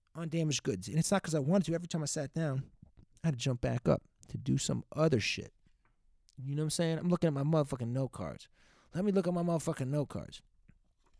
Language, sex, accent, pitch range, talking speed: English, male, American, 140-195 Hz, 240 wpm